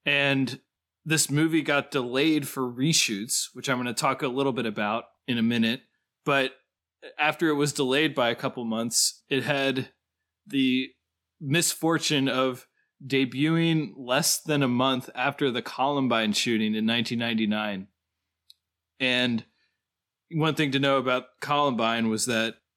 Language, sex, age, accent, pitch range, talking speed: English, male, 20-39, American, 115-145 Hz, 140 wpm